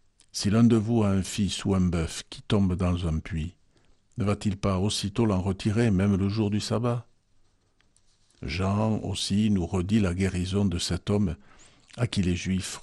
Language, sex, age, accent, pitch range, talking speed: French, male, 60-79, French, 85-100 Hz, 180 wpm